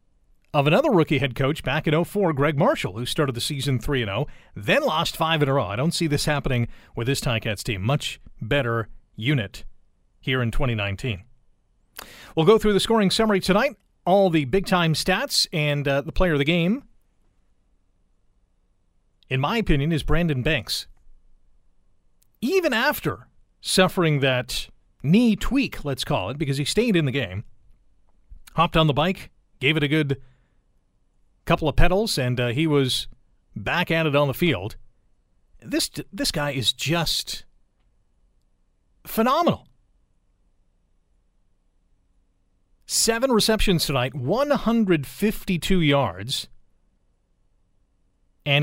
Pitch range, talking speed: 120-170 Hz, 135 wpm